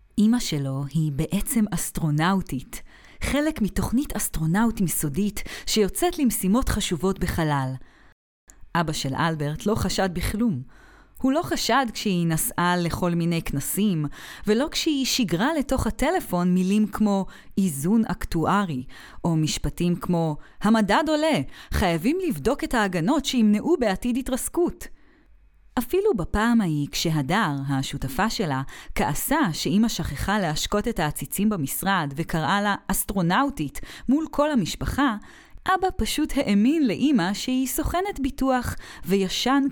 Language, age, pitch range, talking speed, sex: Hebrew, 30-49, 150-230 Hz, 115 wpm, female